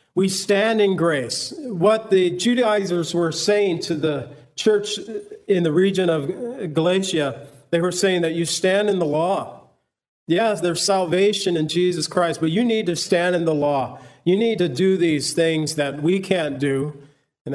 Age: 40-59